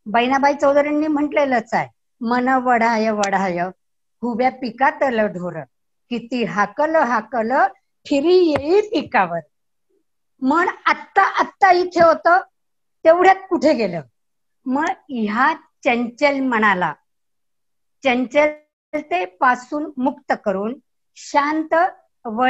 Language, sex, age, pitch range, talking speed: Marathi, male, 50-69, 230-300 Hz, 90 wpm